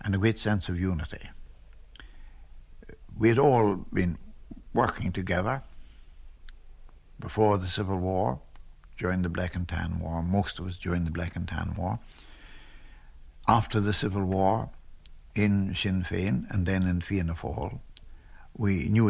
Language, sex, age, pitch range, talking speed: English, male, 60-79, 80-105 Hz, 140 wpm